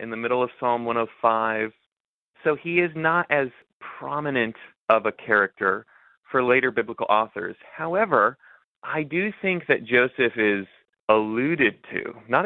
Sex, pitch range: male, 105-125 Hz